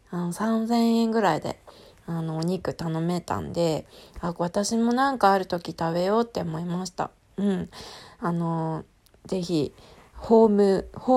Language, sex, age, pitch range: Japanese, female, 20-39, 175-235 Hz